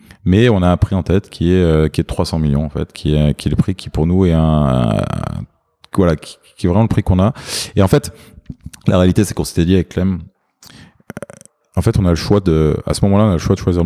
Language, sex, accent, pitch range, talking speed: French, male, French, 80-100 Hz, 275 wpm